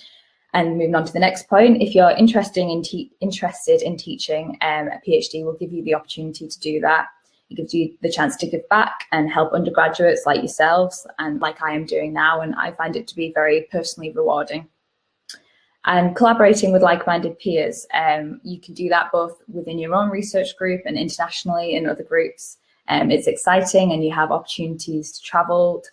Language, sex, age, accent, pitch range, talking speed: English, female, 10-29, British, 155-185 Hz, 200 wpm